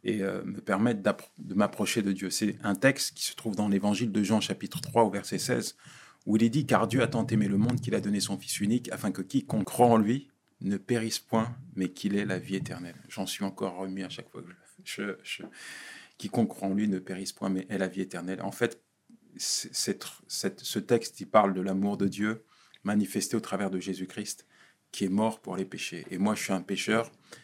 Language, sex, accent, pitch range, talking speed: French, male, French, 95-115 Hz, 245 wpm